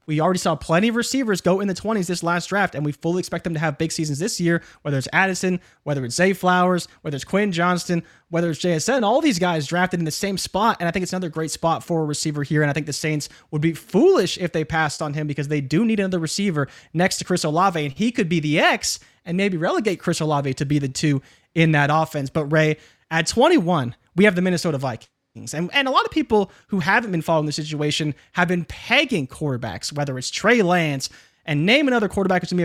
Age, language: 20-39, English